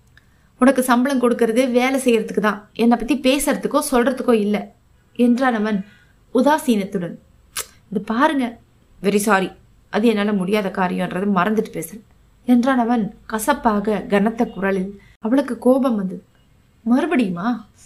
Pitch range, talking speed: 205-255 Hz, 105 wpm